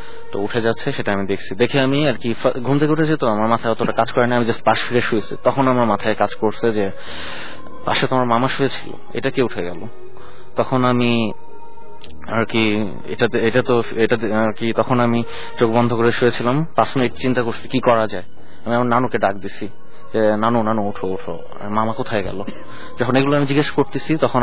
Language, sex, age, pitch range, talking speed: English, male, 30-49, 110-130 Hz, 110 wpm